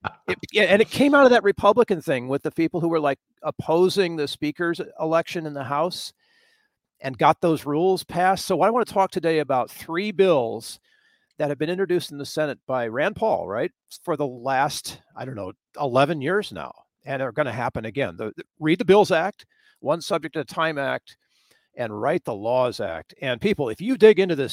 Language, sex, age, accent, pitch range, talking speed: English, male, 50-69, American, 140-190 Hz, 205 wpm